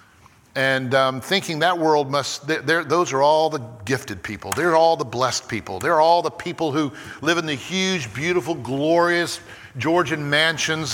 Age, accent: 50-69, American